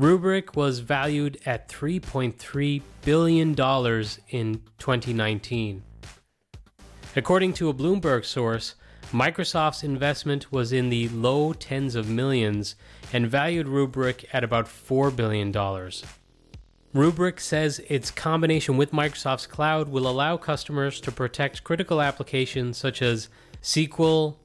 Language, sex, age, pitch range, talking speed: English, male, 30-49, 115-145 Hz, 115 wpm